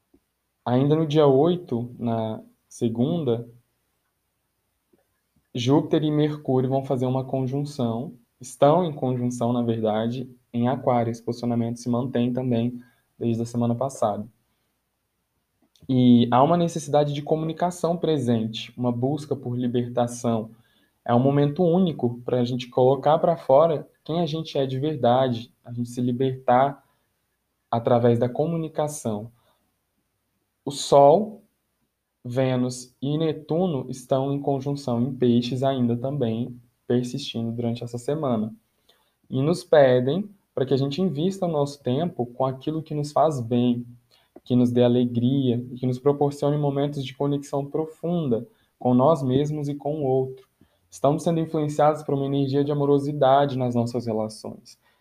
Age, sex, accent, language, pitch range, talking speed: 20-39, male, Brazilian, Portuguese, 120-145 Hz, 135 wpm